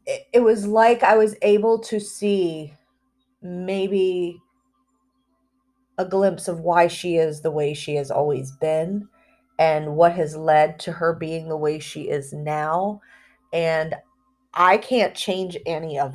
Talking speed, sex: 145 wpm, female